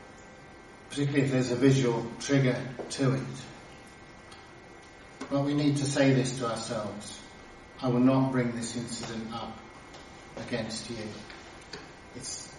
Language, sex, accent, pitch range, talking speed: English, male, British, 115-135 Hz, 125 wpm